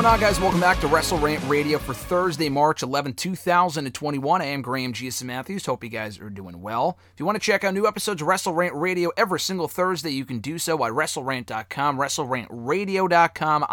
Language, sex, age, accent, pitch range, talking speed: English, male, 30-49, American, 125-165 Hz, 200 wpm